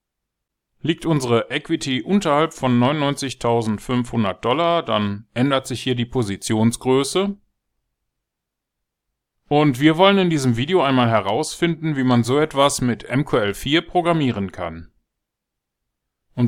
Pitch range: 115-155 Hz